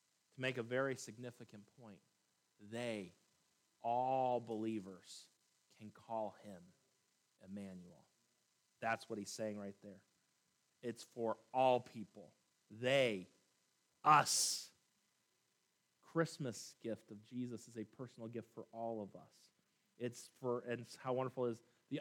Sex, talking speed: male, 120 wpm